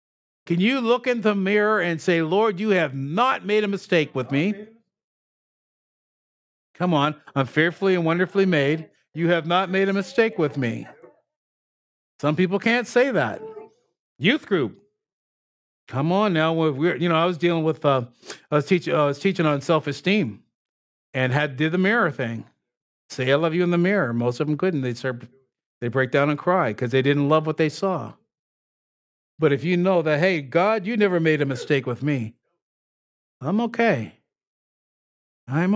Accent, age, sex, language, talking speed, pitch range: American, 60-79, male, English, 180 wpm, 145-205 Hz